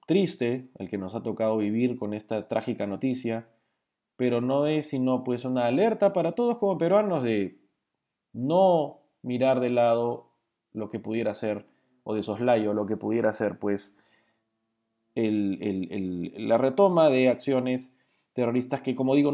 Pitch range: 100-130 Hz